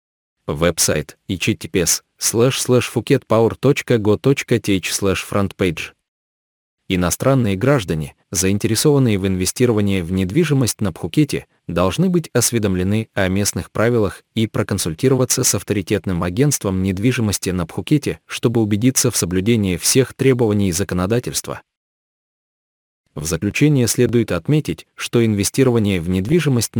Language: Russian